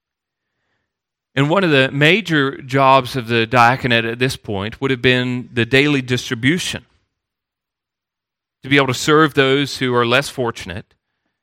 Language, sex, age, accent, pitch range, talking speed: English, male, 40-59, American, 110-140 Hz, 145 wpm